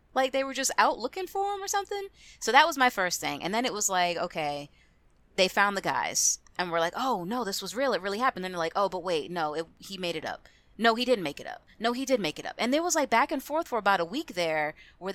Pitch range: 160-235 Hz